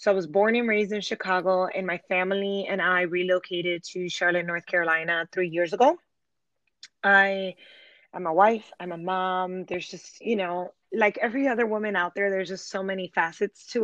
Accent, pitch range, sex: American, 180-210 Hz, female